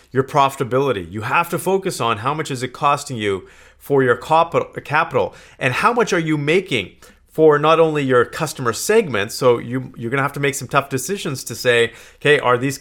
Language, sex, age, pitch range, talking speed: English, male, 40-59, 120-155 Hz, 200 wpm